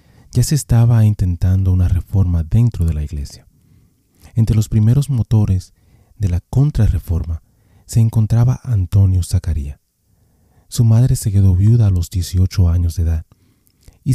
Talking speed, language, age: 140 wpm, Spanish, 30-49